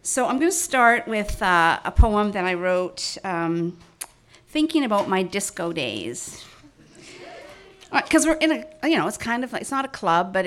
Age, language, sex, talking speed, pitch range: 50-69, English, female, 190 wpm, 190-275 Hz